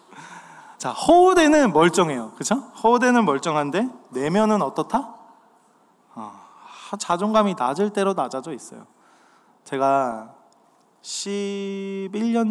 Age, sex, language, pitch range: 20-39, male, Korean, 130-210 Hz